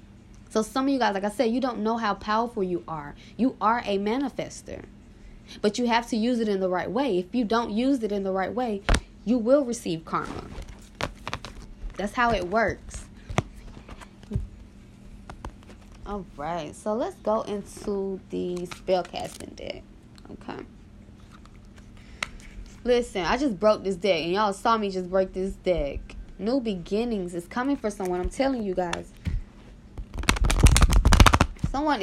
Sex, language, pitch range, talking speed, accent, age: female, English, 180-230 Hz, 150 wpm, American, 10-29